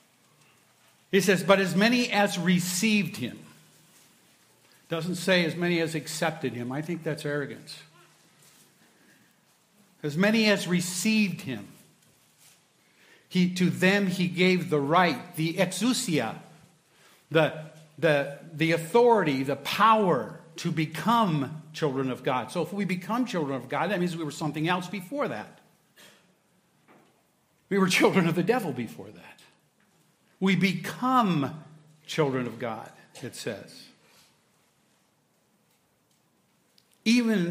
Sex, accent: male, American